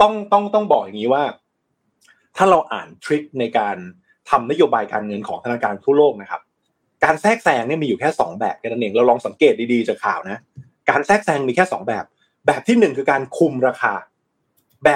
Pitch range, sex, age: 125-205 Hz, male, 20-39